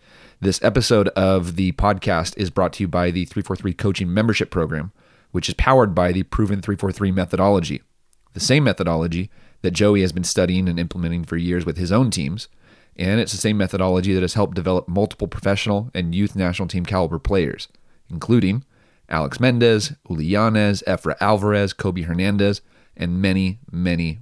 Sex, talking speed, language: male, 165 wpm, English